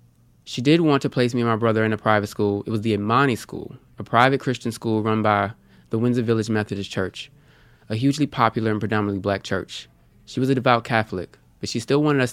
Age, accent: 20-39, American